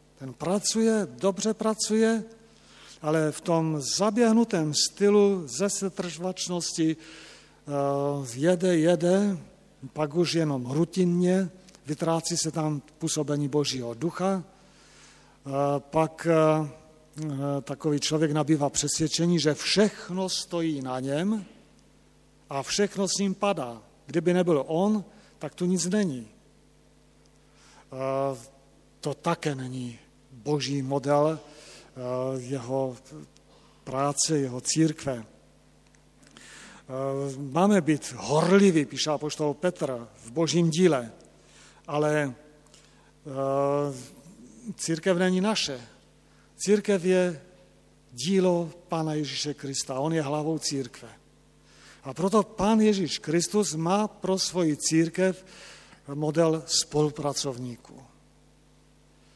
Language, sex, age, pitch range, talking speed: Slovak, male, 50-69, 135-180 Hz, 90 wpm